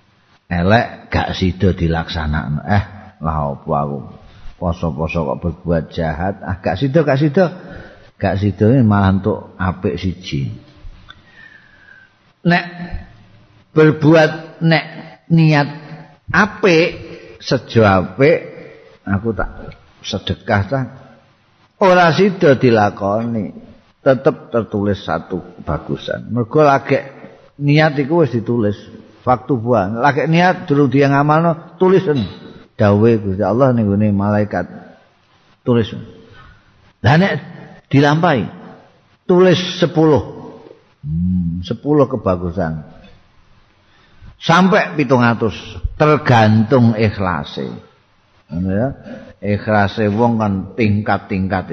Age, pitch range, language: 50-69, 95-145 Hz, Indonesian